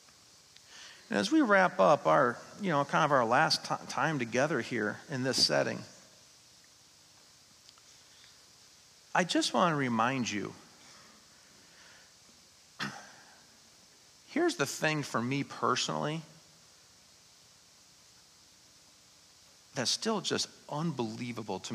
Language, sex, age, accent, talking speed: English, male, 40-59, American, 95 wpm